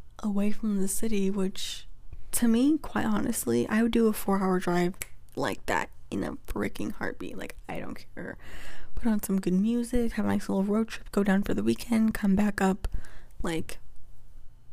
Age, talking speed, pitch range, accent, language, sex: 20-39, 190 wpm, 185-230 Hz, American, English, female